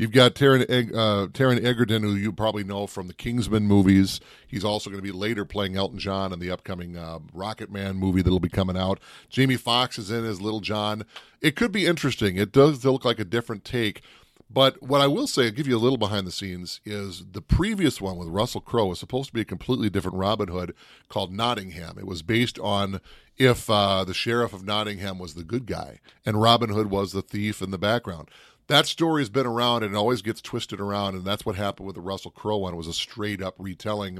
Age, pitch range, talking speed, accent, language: 30-49, 95-120 Hz, 230 wpm, American, English